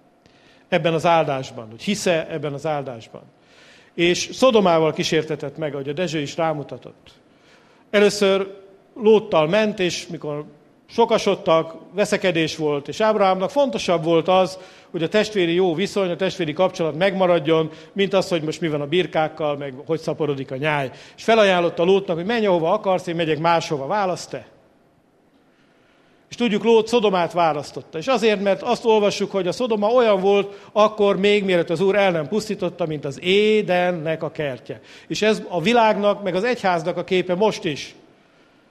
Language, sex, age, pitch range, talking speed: English, male, 50-69, 160-210 Hz, 160 wpm